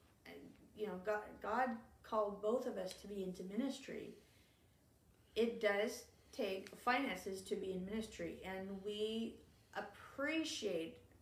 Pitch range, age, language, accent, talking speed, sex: 185-215 Hz, 30-49, English, American, 125 wpm, female